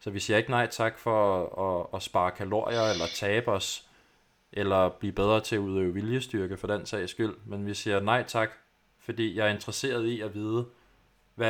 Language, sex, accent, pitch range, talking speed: Danish, male, native, 100-115 Hz, 195 wpm